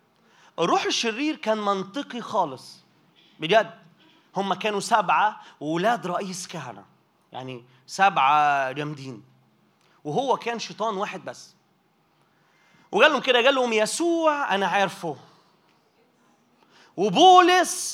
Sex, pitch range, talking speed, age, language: male, 180-270 Hz, 95 wpm, 30-49, Arabic